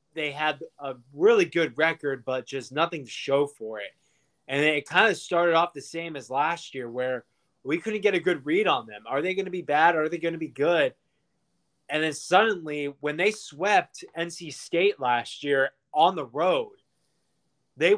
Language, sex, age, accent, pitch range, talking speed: English, male, 20-39, American, 135-175 Hz, 200 wpm